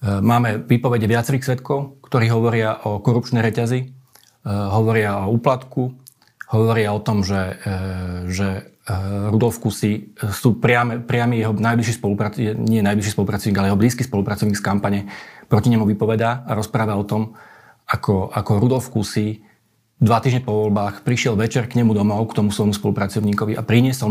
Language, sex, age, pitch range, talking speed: Slovak, male, 40-59, 105-125 Hz, 145 wpm